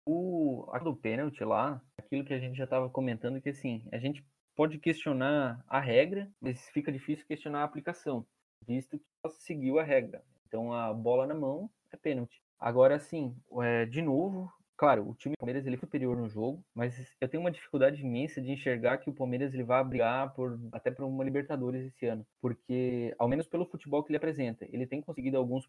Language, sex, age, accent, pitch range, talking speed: Portuguese, male, 20-39, Brazilian, 120-145 Hz, 200 wpm